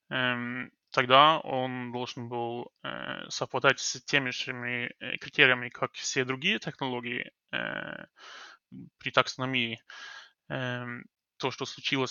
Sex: male